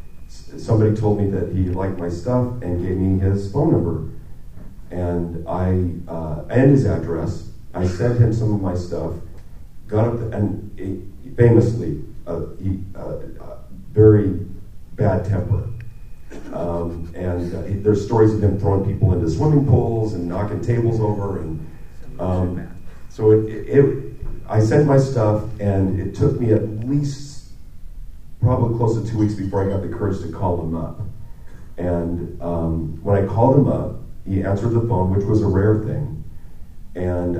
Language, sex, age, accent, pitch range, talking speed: English, male, 40-59, American, 90-115 Hz, 155 wpm